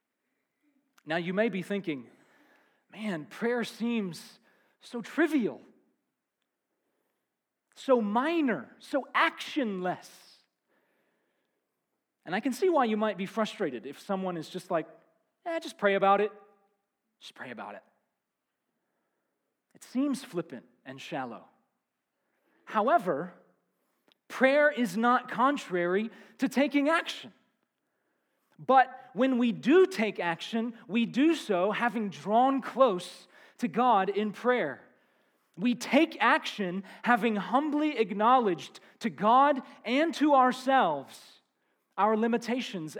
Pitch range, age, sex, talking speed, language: 200-270 Hz, 40-59, male, 110 wpm, English